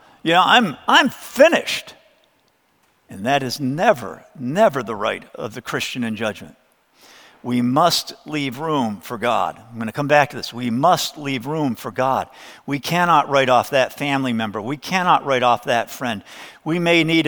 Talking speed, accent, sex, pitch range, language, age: 180 wpm, American, male, 125-160 Hz, English, 50-69